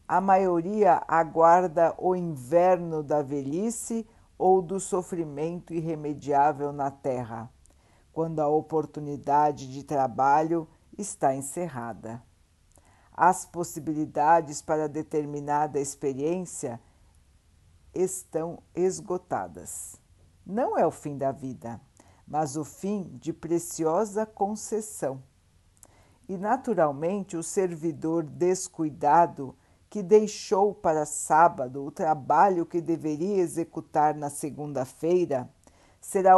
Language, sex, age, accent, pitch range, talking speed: Portuguese, female, 60-79, Brazilian, 120-175 Hz, 90 wpm